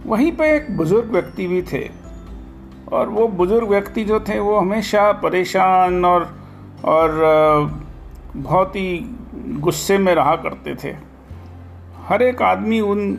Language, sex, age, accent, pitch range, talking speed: Hindi, male, 40-59, native, 150-215 Hz, 130 wpm